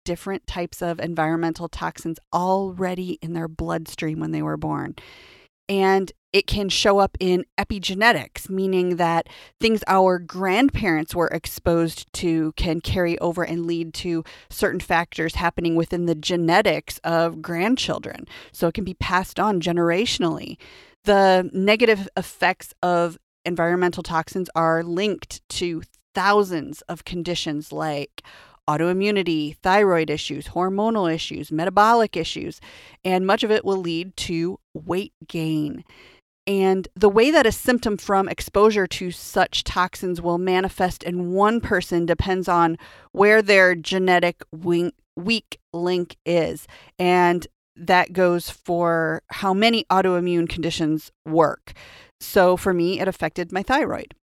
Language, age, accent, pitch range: English, 30-49, American, 165-190 Hz